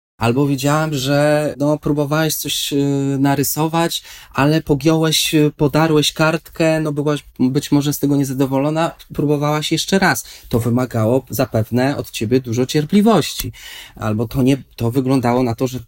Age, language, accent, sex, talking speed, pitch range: 20-39, Polish, native, male, 140 wpm, 120-150 Hz